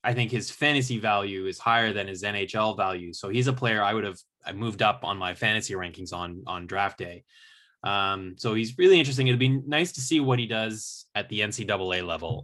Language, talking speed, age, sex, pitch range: English, 220 wpm, 10-29, male, 100-130 Hz